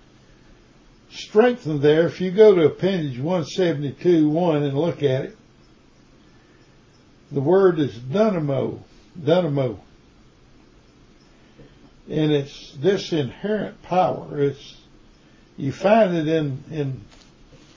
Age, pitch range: 60-79, 140-175 Hz